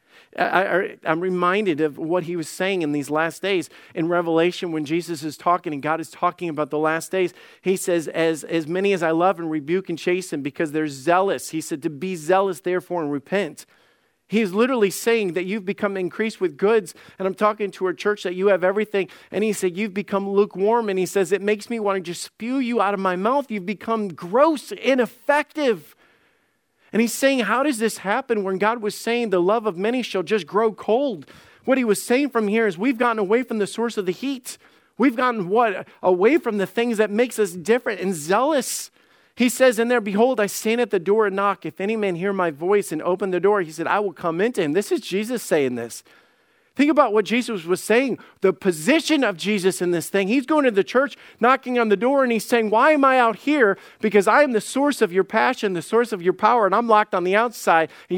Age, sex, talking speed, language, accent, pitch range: 40-59, male, 230 wpm, English, American, 180-230 Hz